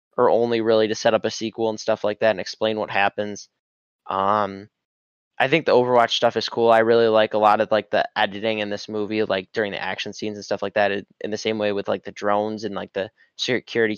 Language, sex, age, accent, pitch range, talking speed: English, male, 10-29, American, 105-120 Hz, 240 wpm